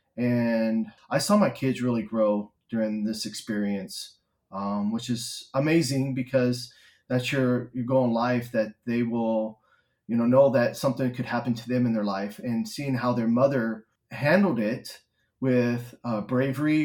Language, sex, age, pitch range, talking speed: English, male, 30-49, 115-130 Hz, 165 wpm